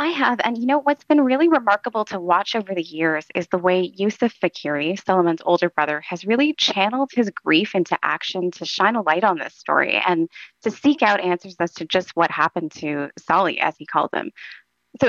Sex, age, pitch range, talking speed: female, 20-39, 165-215 Hz, 210 wpm